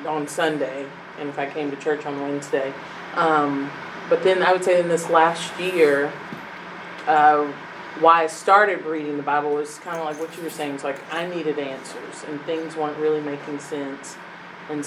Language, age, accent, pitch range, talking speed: English, 30-49, American, 145-170 Hz, 190 wpm